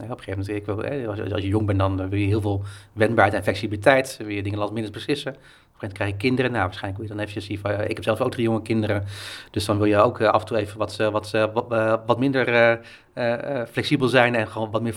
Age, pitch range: 30-49, 100-115 Hz